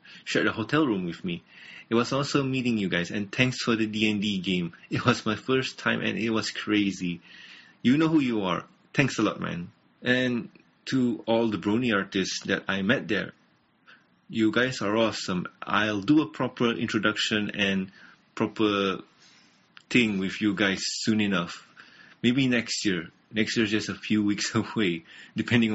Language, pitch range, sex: English, 100-120 Hz, male